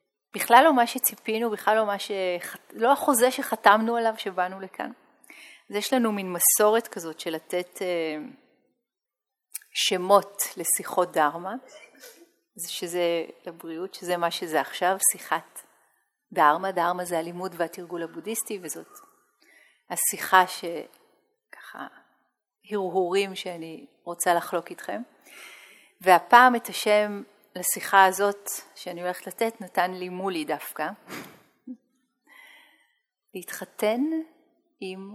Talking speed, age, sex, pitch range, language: 105 wpm, 30-49, female, 180-230 Hz, Hebrew